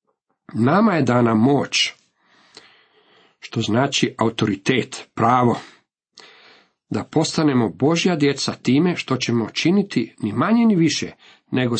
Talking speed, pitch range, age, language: 105 wpm, 115-160 Hz, 50-69, Croatian